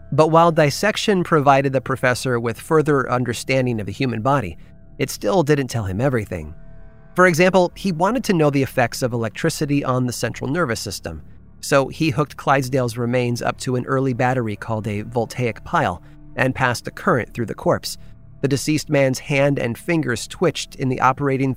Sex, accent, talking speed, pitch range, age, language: male, American, 180 wpm, 115-150 Hz, 30-49, English